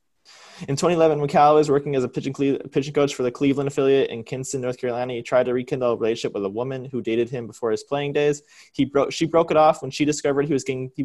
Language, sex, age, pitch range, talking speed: English, male, 20-39, 110-140 Hz, 250 wpm